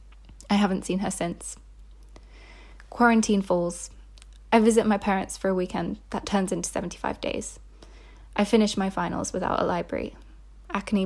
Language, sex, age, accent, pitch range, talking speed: English, female, 20-39, British, 180-215 Hz, 145 wpm